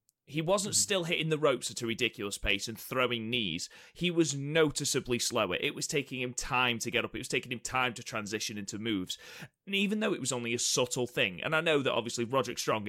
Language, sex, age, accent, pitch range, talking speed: English, male, 30-49, British, 110-145 Hz, 235 wpm